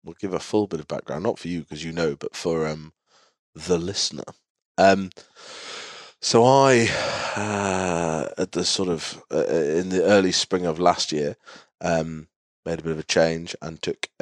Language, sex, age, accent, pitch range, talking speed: English, male, 20-39, British, 75-90 Hz, 180 wpm